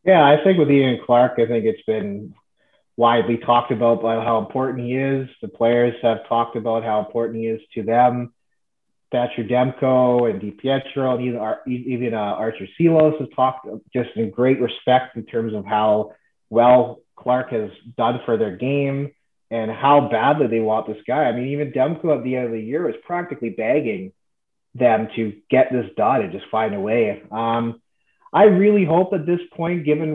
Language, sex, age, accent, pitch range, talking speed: English, male, 30-49, American, 115-130 Hz, 190 wpm